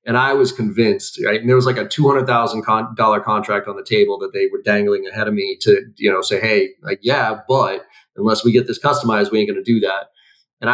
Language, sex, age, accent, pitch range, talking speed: English, male, 30-49, American, 110-140 Hz, 235 wpm